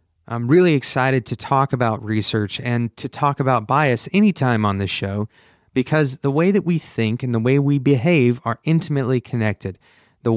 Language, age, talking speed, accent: English, 30-49, 180 wpm, American